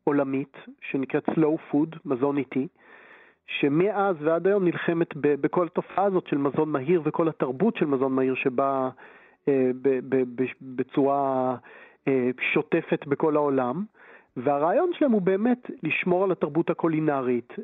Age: 40-59